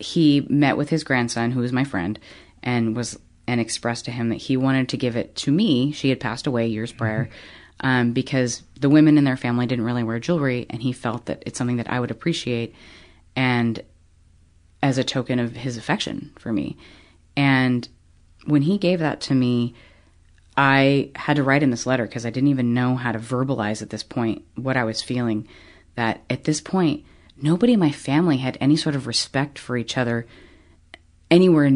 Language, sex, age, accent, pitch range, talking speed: English, female, 30-49, American, 105-140 Hz, 200 wpm